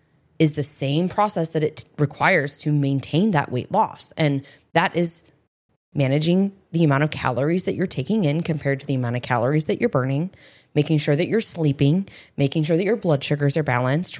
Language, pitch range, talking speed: English, 140-170 Hz, 195 wpm